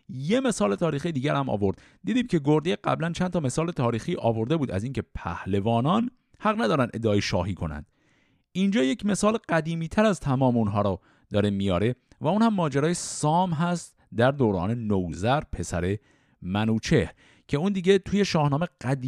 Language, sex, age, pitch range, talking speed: Persian, male, 50-69, 105-160 Hz, 160 wpm